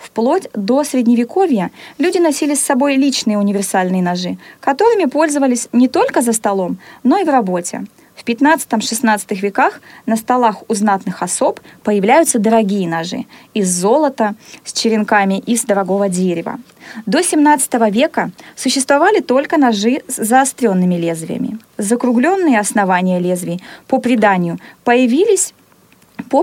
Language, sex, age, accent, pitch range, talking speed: Russian, female, 20-39, native, 205-275 Hz, 125 wpm